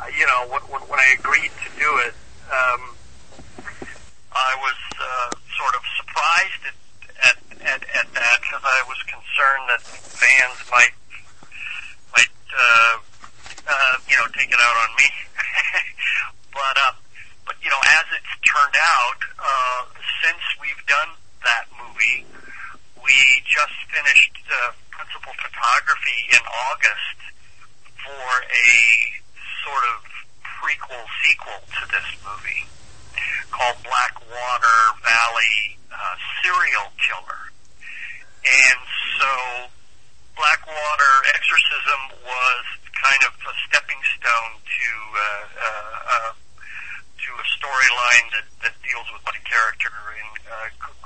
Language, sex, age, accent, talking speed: English, male, 50-69, American, 120 wpm